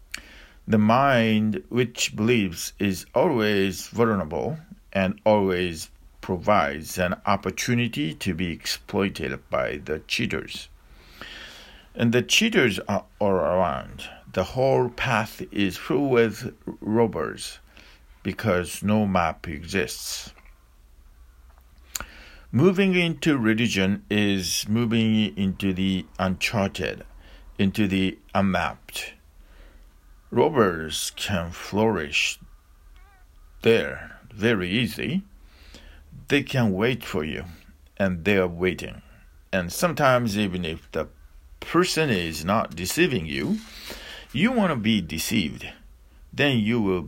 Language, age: English, 50-69